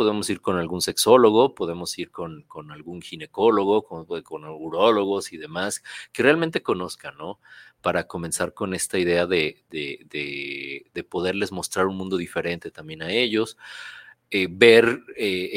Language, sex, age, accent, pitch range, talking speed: Spanish, male, 40-59, Mexican, 90-115 Hz, 145 wpm